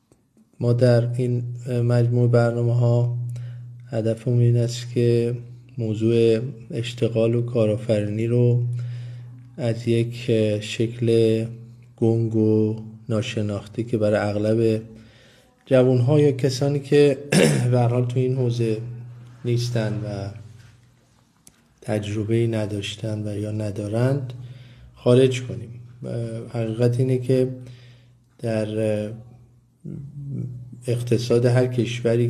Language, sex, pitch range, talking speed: Persian, male, 110-120 Hz, 85 wpm